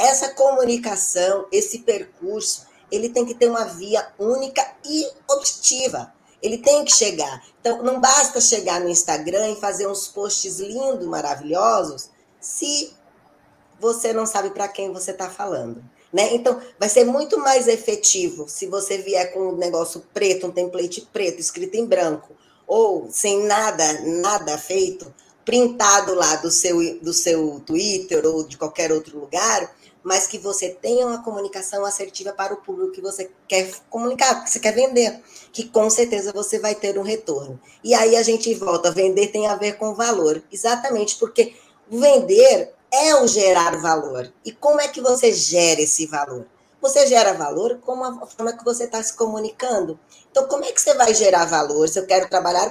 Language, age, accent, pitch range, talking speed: Portuguese, 10-29, Brazilian, 185-255 Hz, 170 wpm